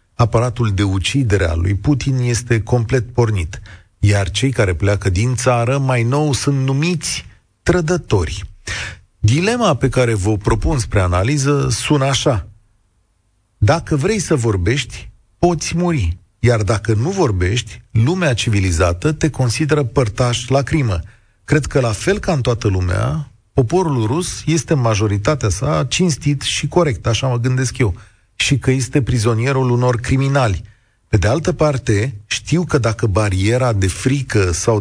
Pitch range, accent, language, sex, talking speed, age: 100-135 Hz, native, Romanian, male, 145 wpm, 40-59